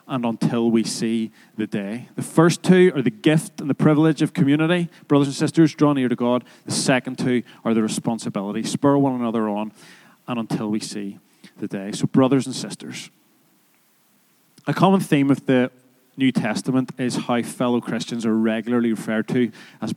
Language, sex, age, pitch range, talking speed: English, male, 30-49, 120-155 Hz, 180 wpm